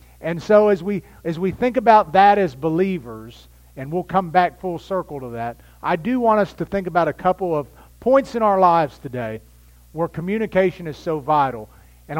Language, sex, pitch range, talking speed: English, male, 125-185 Hz, 195 wpm